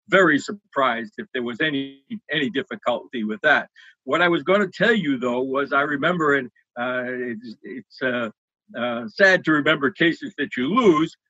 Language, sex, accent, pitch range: English, male, American, 130-190 Hz